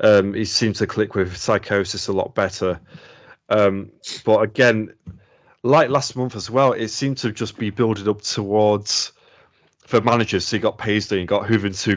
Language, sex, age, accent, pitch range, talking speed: English, male, 30-49, British, 95-115 Hz, 175 wpm